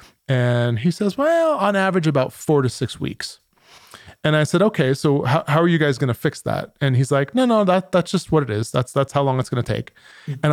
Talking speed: 255 wpm